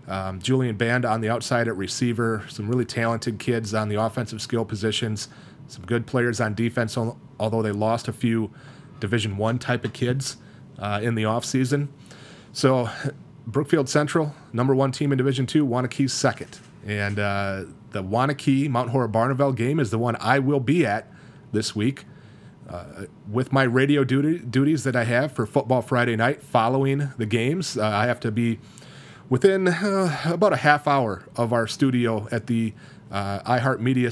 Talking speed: 170 wpm